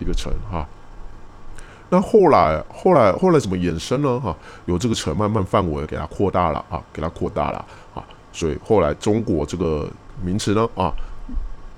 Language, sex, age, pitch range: Chinese, male, 20-39, 85-110 Hz